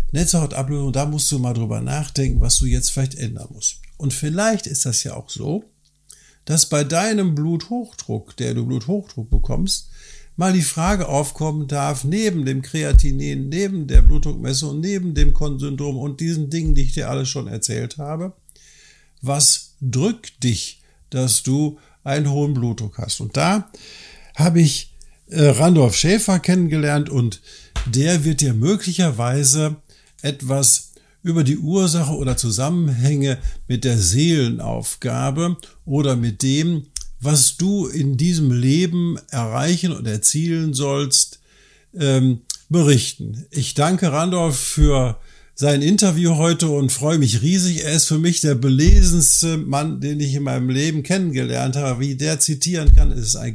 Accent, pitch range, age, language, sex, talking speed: German, 135-165 Hz, 50-69, German, male, 140 wpm